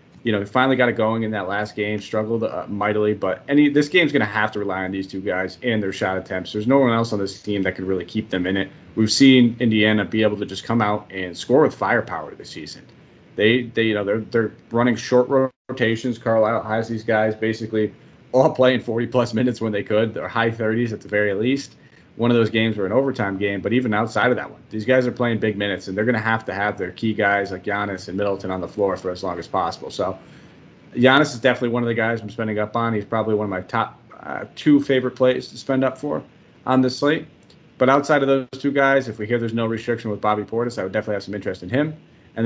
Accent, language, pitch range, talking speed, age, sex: American, English, 105-120 Hz, 260 wpm, 30-49, male